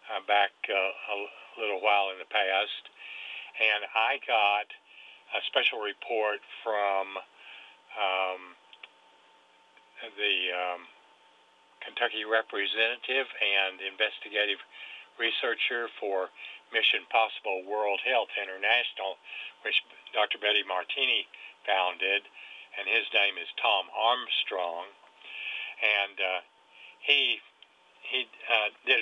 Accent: American